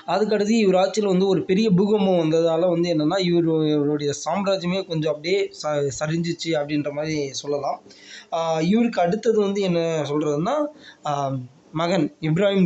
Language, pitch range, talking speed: Tamil, 155-195 Hz, 130 wpm